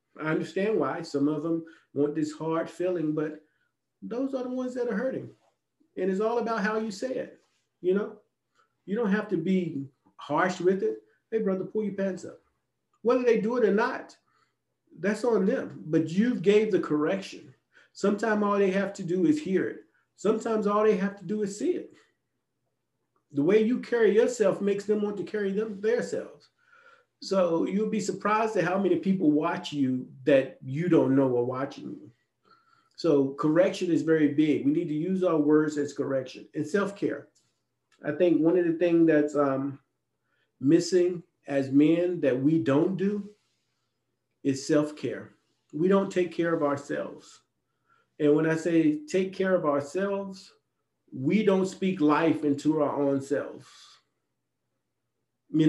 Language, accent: English, American